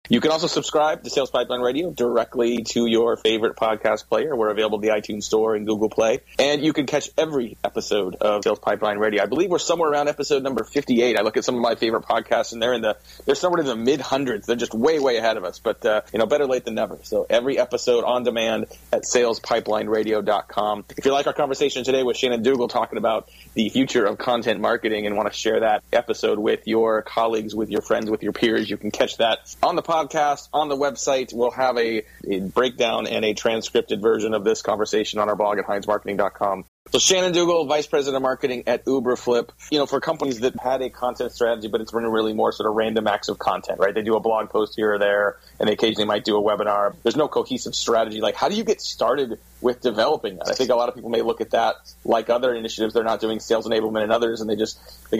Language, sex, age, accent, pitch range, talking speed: English, male, 30-49, American, 110-130 Hz, 240 wpm